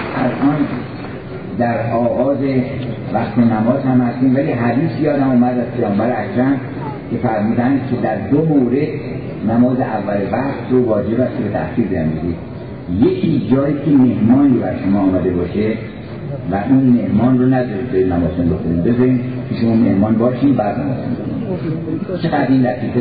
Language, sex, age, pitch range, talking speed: Persian, male, 50-69, 120-155 Hz, 145 wpm